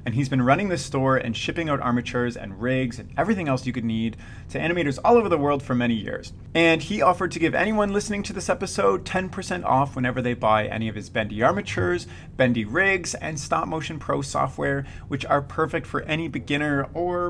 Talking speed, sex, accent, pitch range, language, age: 210 wpm, male, American, 115-170 Hz, English, 30-49